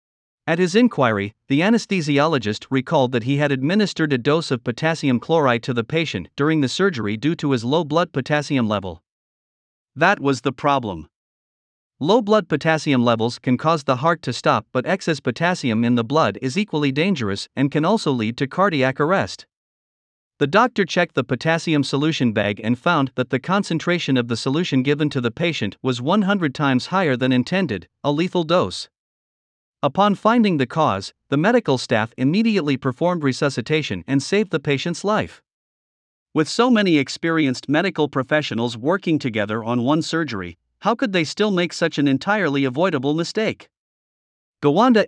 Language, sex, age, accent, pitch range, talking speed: English, male, 50-69, American, 130-170 Hz, 165 wpm